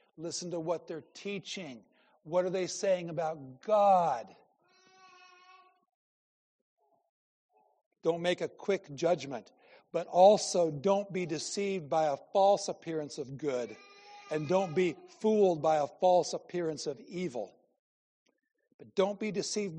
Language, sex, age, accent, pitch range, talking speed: English, male, 60-79, American, 160-195 Hz, 125 wpm